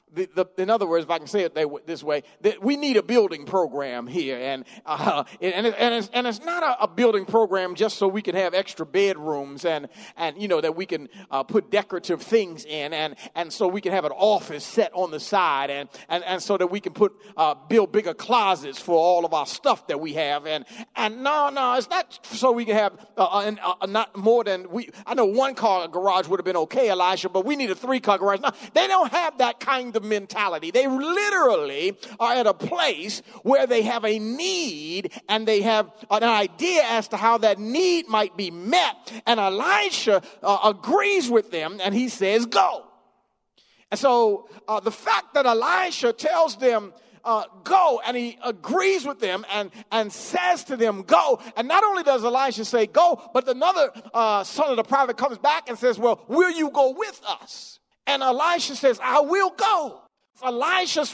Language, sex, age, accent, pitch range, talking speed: English, male, 40-59, American, 195-275 Hz, 205 wpm